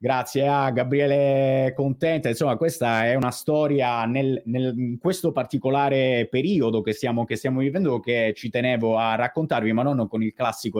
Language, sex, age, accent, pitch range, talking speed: Italian, male, 30-49, native, 120-150 Hz, 165 wpm